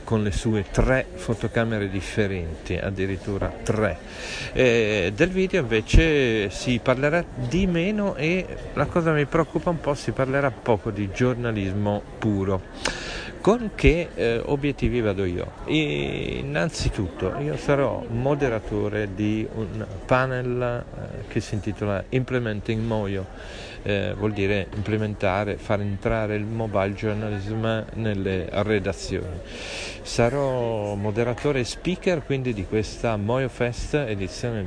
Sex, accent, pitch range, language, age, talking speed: male, native, 100-125 Hz, Italian, 40-59, 120 wpm